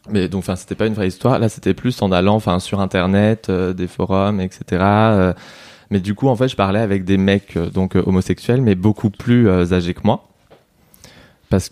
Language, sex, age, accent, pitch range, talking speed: French, male, 20-39, French, 90-105 Hz, 220 wpm